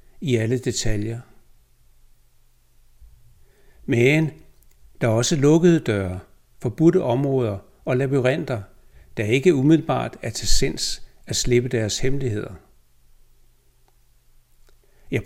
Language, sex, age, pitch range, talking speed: Danish, male, 60-79, 105-145 Hz, 95 wpm